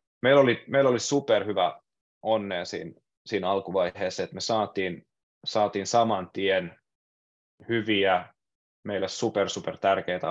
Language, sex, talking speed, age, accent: Finnish, male, 120 wpm, 20-39, native